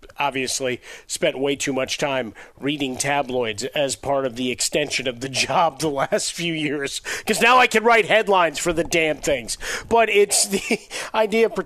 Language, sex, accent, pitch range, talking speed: English, male, American, 135-160 Hz, 180 wpm